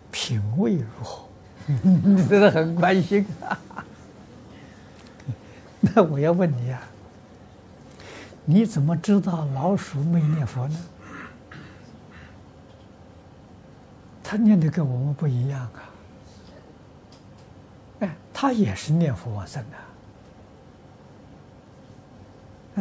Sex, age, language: male, 60-79, Chinese